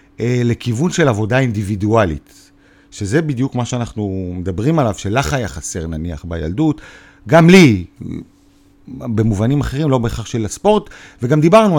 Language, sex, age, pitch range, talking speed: Hebrew, male, 40-59, 110-155 Hz, 125 wpm